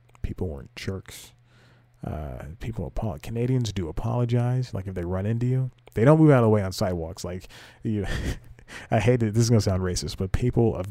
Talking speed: 215 wpm